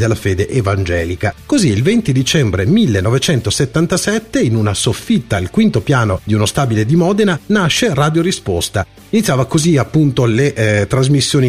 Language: Italian